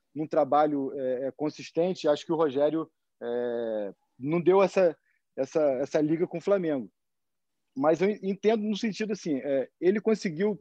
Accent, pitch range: Brazilian, 155-195 Hz